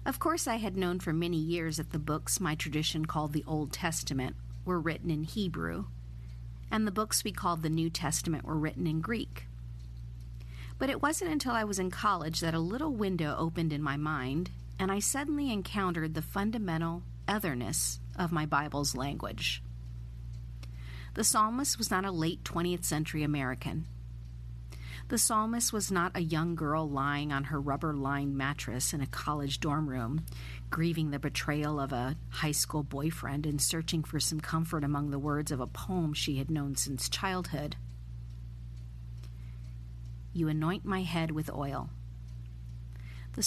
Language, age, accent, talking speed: English, 40-59, American, 160 wpm